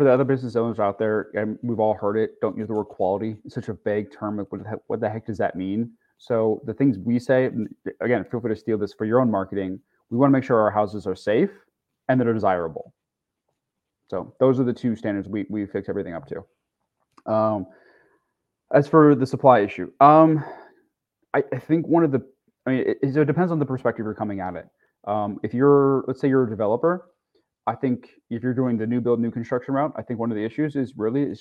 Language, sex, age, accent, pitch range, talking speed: English, male, 30-49, American, 105-130 Hz, 240 wpm